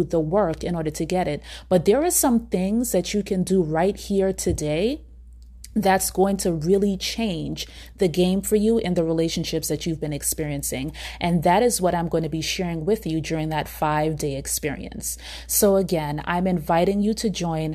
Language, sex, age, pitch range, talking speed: English, female, 30-49, 160-190 Hz, 195 wpm